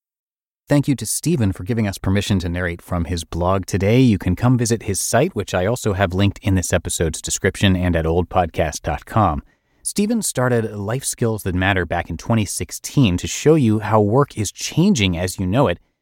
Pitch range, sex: 90-125 Hz, male